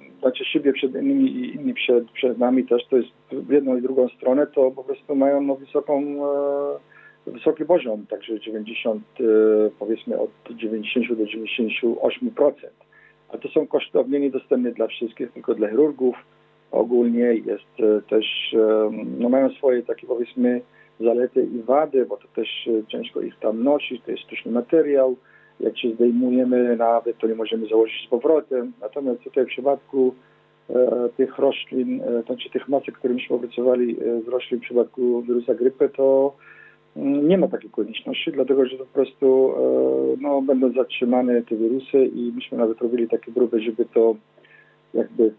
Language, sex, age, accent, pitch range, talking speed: Polish, male, 50-69, native, 115-135 Hz, 160 wpm